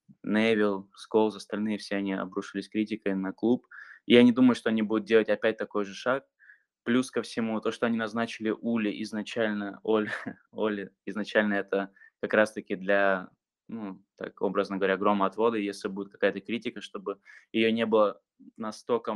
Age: 20-39